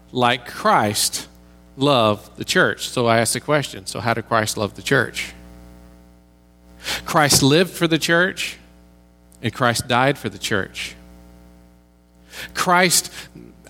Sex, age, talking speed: male, 40-59, 125 wpm